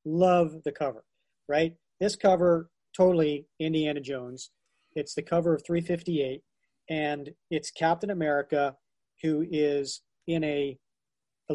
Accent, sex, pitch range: American, male, 145-185 Hz